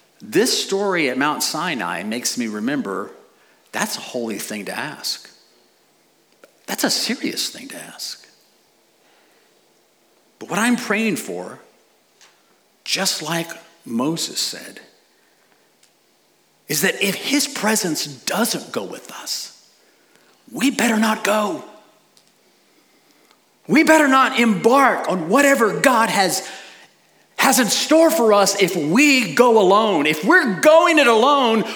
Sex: male